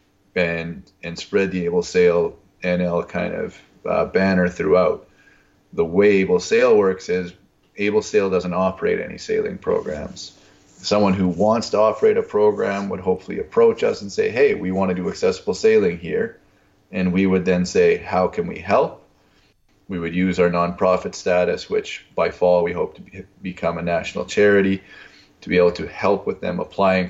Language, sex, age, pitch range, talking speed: English, male, 30-49, 90-105 Hz, 175 wpm